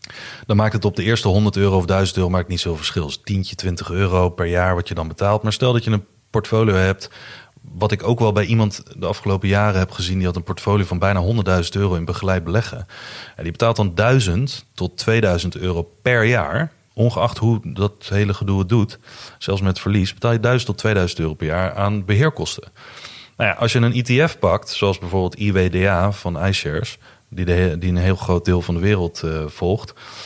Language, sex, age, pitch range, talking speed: Dutch, male, 30-49, 90-110 Hz, 210 wpm